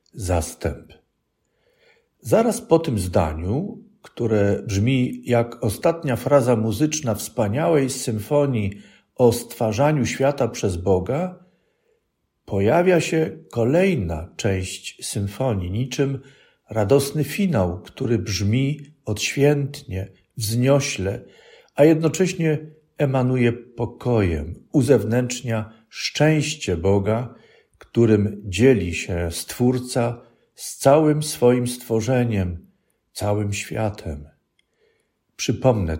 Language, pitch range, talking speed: Polish, 105-140 Hz, 80 wpm